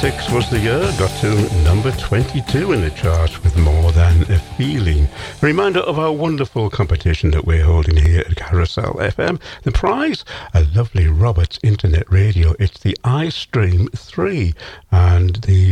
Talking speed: 155 wpm